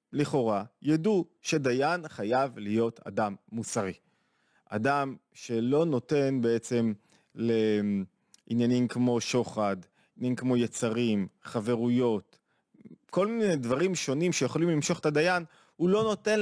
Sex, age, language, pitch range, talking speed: male, 30-49, Hebrew, 120-165 Hz, 105 wpm